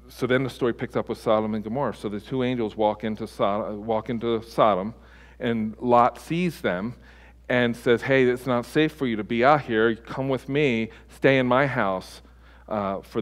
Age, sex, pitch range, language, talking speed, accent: 50-69, male, 105-125 Hz, English, 195 wpm, American